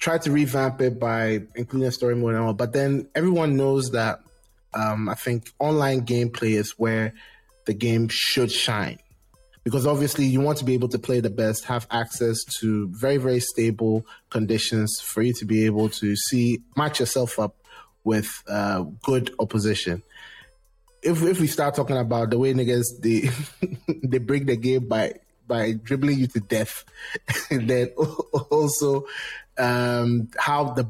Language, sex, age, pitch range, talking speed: English, male, 20-39, 115-140 Hz, 165 wpm